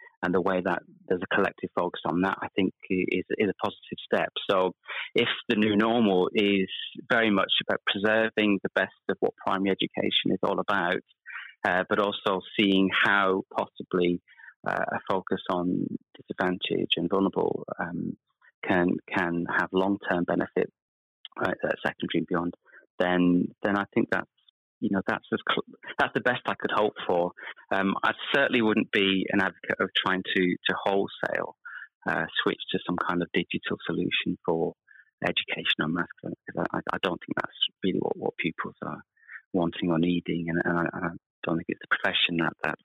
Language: English